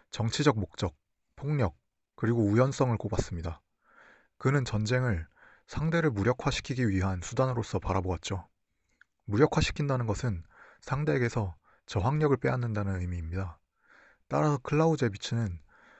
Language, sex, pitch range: Korean, male, 95-130 Hz